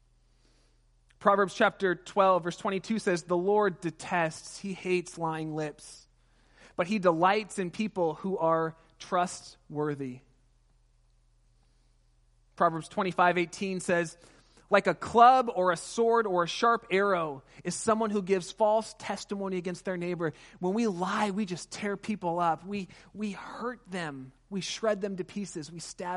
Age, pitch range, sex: 30-49, 130-180 Hz, male